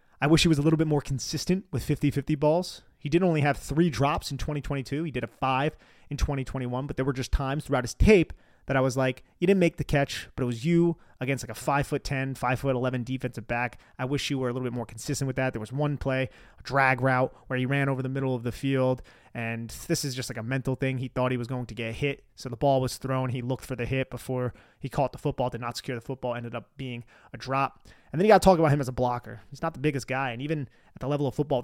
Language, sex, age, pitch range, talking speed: English, male, 30-49, 125-145 Hz, 280 wpm